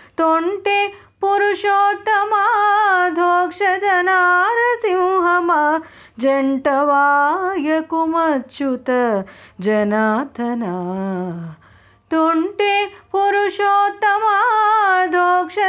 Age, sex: 30-49, female